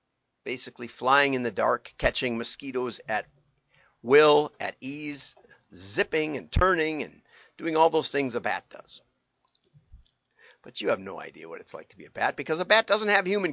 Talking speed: 175 wpm